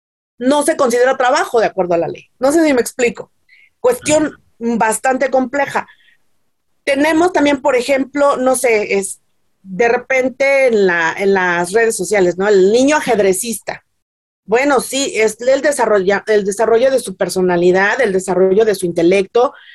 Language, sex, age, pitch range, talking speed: Spanish, female, 40-59, 205-265 Hz, 155 wpm